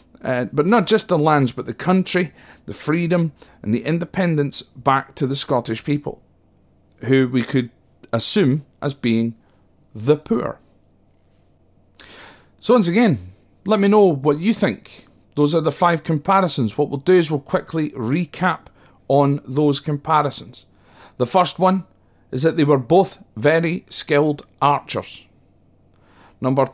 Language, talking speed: English, 140 wpm